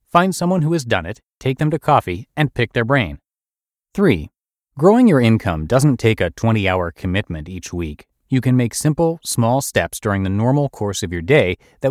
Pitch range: 95-145 Hz